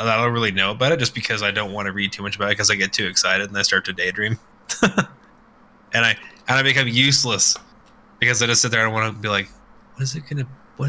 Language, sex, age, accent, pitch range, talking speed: English, male, 20-39, American, 105-135 Hz, 270 wpm